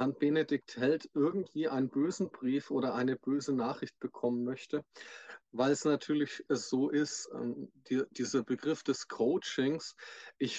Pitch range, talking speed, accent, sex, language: 125-150 Hz, 135 wpm, German, male, German